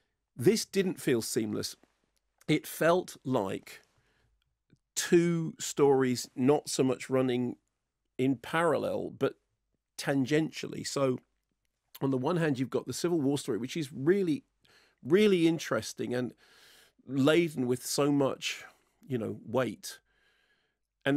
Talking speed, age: 120 wpm, 40-59